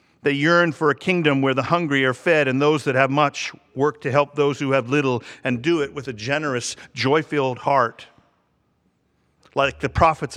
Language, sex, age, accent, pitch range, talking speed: English, male, 50-69, American, 115-150 Hz, 190 wpm